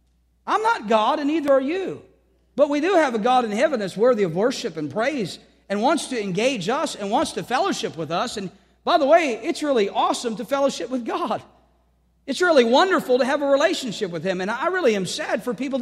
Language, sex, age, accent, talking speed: English, male, 40-59, American, 225 wpm